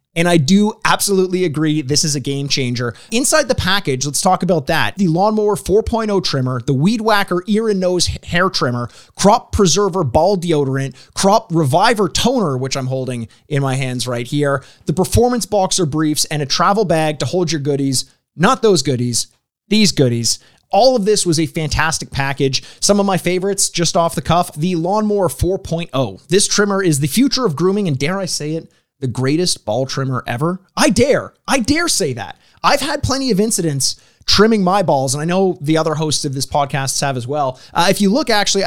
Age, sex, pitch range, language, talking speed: 20-39, male, 140-195 Hz, English, 195 wpm